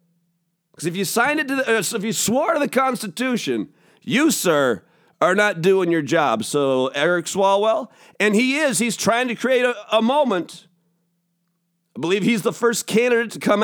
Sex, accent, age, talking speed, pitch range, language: male, American, 50-69, 185 wpm, 170-235 Hz, English